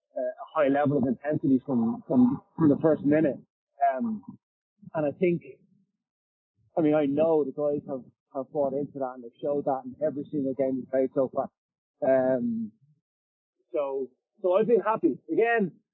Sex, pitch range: male, 135-205 Hz